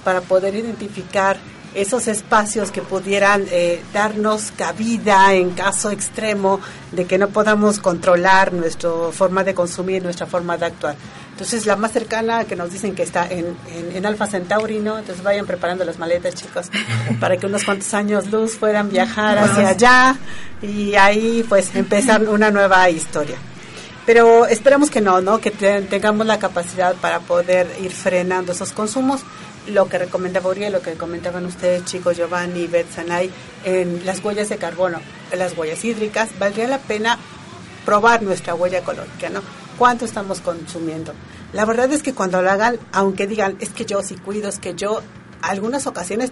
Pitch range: 180-210 Hz